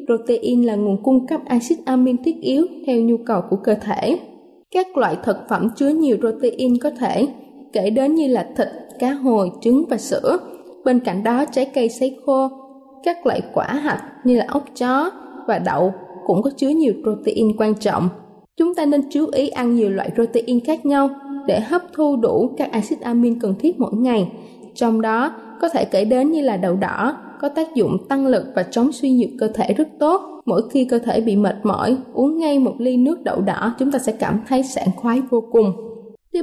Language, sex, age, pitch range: Thai, female, 20-39, 225-285 Hz